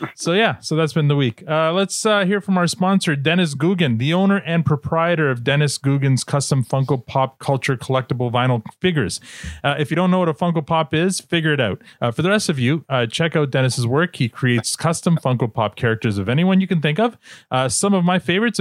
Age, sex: 30-49, male